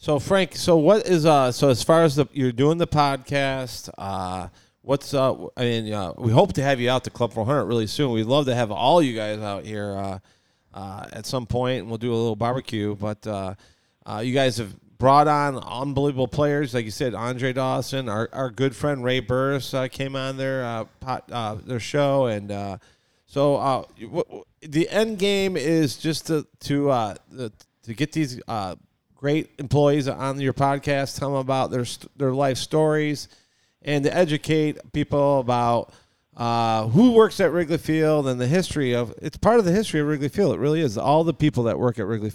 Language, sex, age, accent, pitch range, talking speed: English, male, 30-49, American, 115-145 Hz, 205 wpm